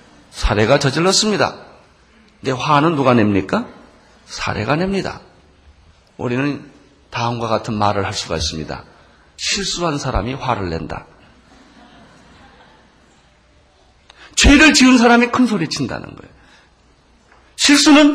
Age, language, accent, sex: 40-59, Korean, native, male